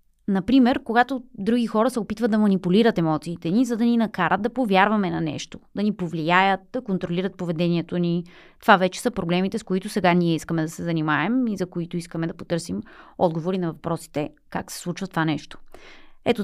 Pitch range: 175-230 Hz